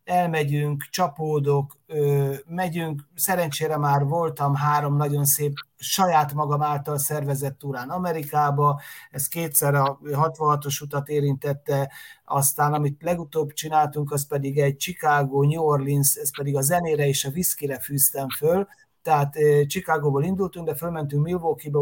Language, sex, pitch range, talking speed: Hungarian, male, 145-165 Hz, 130 wpm